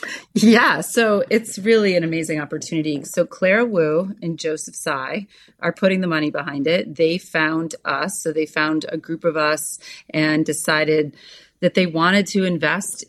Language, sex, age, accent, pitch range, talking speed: English, female, 30-49, American, 155-180 Hz, 165 wpm